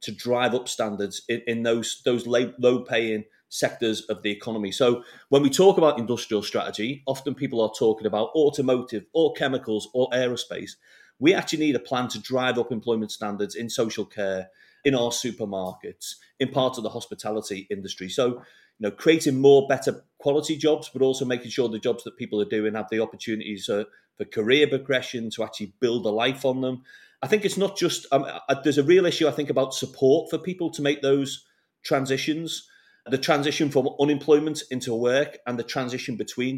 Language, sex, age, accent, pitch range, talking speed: English, male, 30-49, British, 110-140 Hz, 190 wpm